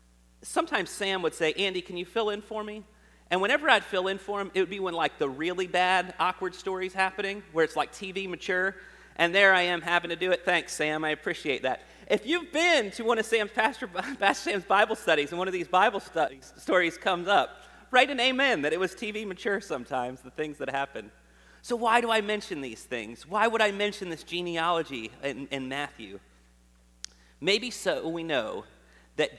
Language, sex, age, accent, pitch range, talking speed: English, male, 40-59, American, 125-195 Hz, 210 wpm